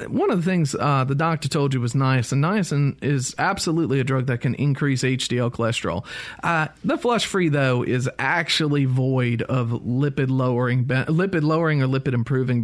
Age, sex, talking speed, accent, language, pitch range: 40-59, male, 160 wpm, American, English, 130-165 Hz